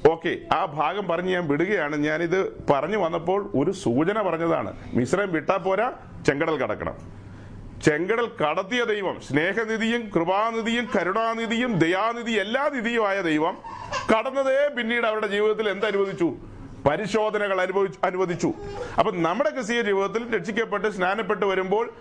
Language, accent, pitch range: Malayalam, native, 165-220 Hz